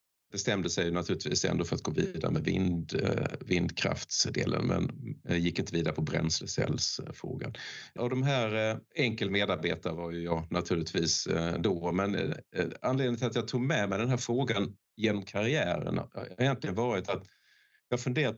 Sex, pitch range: male, 85-115 Hz